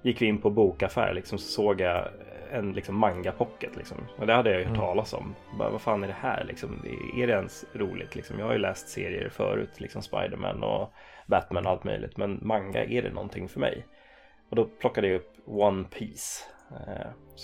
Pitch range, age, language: 95-110 Hz, 20-39, Swedish